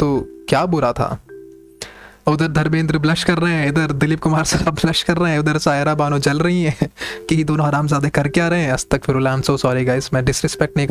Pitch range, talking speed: 130-170 Hz, 160 wpm